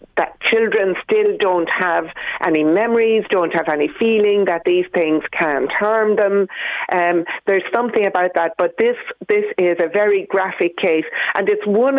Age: 60-79